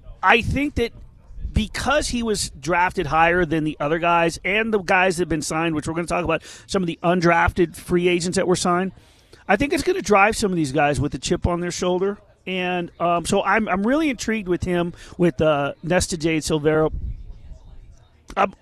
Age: 40-59